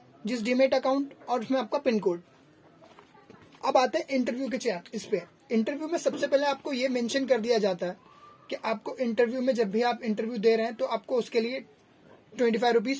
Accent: native